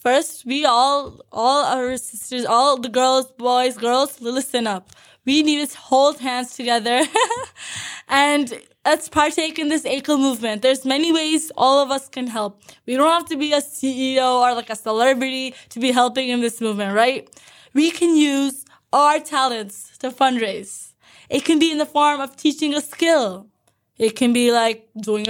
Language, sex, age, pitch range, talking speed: English, female, 20-39, 245-300 Hz, 175 wpm